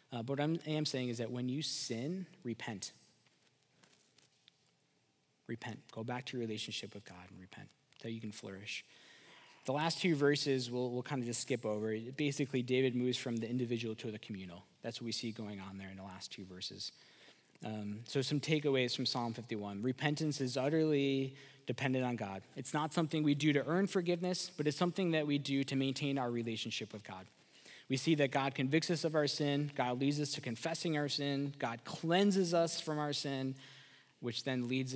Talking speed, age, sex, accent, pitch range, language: 195 wpm, 20-39, male, American, 120-150 Hz, English